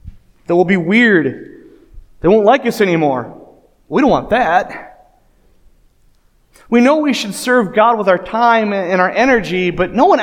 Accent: American